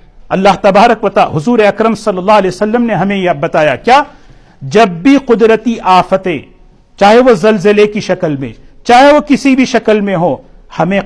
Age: 50-69